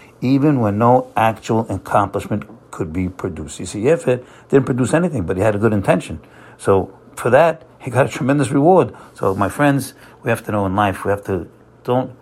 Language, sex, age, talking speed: English, male, 60-79, 200 wpm